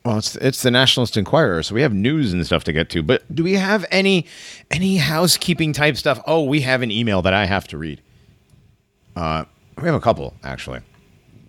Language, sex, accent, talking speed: English, male, American, 210 wpm